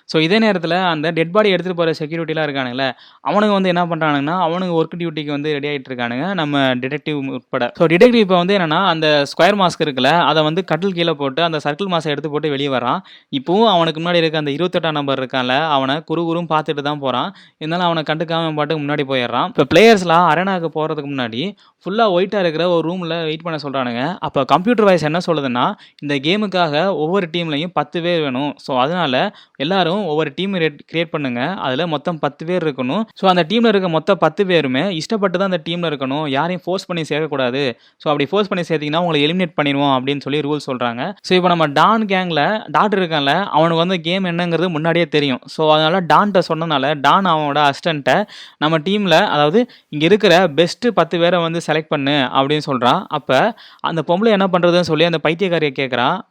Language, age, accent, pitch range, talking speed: Tamil, 20-39, native, 145-180 Hz, 100 wpm